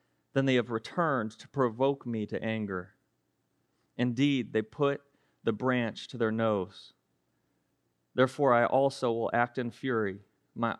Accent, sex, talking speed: American, male, 140 wpm